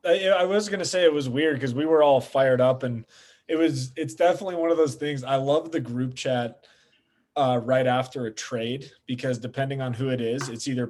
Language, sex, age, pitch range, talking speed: English, male, 20-39, 120-140 Hz, 225 wpm